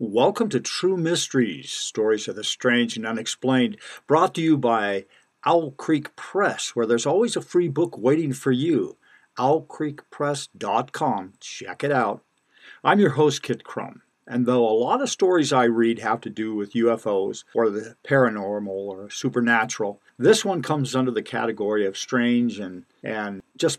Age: 50-69